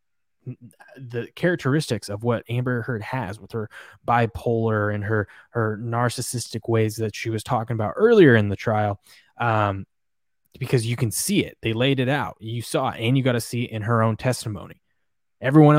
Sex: male